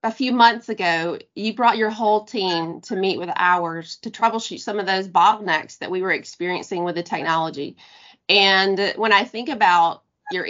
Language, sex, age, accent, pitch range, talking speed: English, female, 30-49, American, 185-230 Hz, 185 wpm